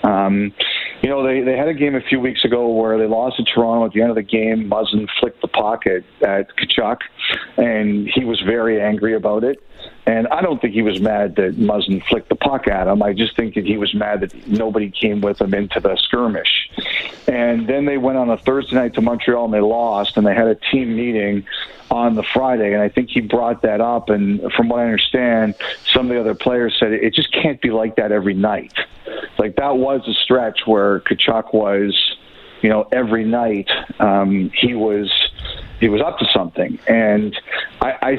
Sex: male